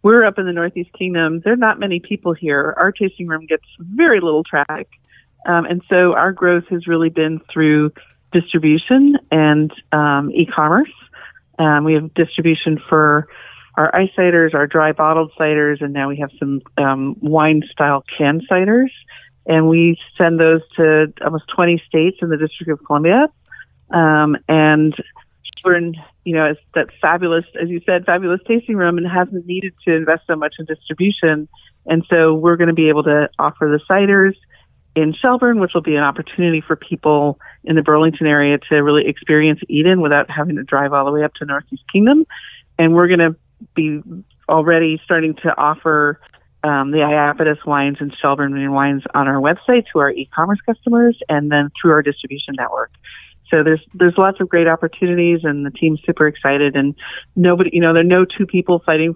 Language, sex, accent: English, female, American